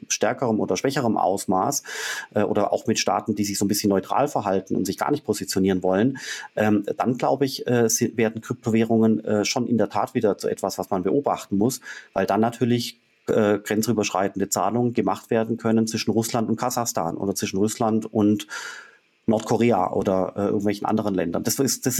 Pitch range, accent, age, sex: 100-115 Hz, German, 30-49, male